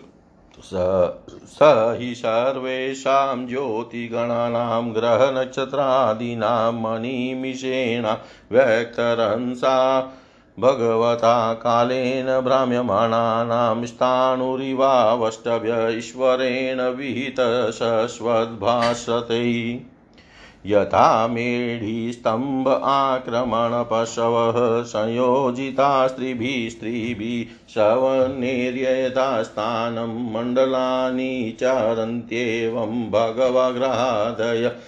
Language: Hindi